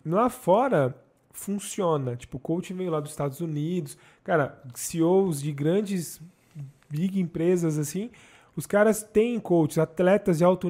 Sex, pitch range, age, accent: male, 160-200 Hz, 20-39, Brazilian